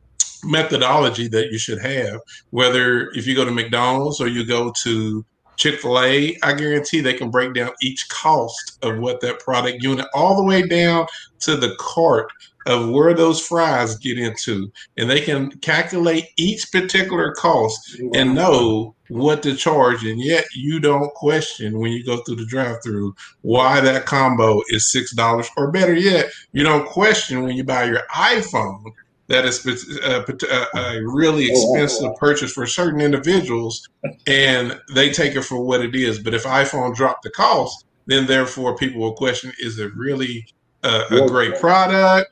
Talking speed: 170 wpm